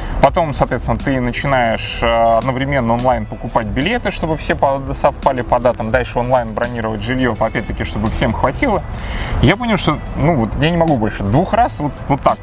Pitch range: 115-140 Hz